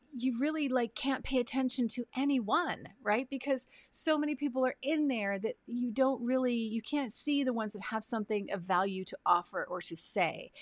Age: 30-49